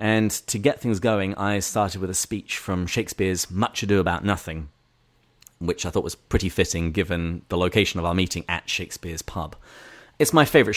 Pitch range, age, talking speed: 90-115 Hz, 30-49, 190 wpm